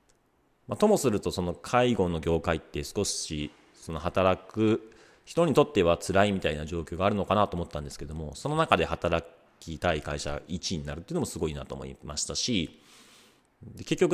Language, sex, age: Japanese, male, 40-59